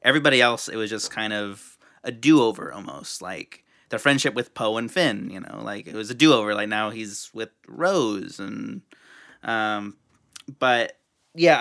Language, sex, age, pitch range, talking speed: English, male, 30-49, 110-140 Hz, 170 wpm